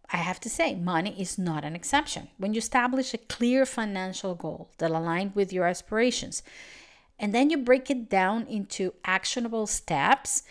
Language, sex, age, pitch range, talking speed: English, female, 50-69, 180-235 Hz, 170 wpm